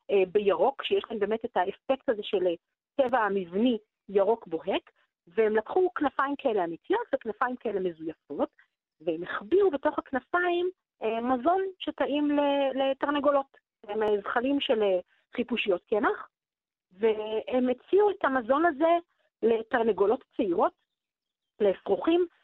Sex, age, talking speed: female, 40-59, 105 wpm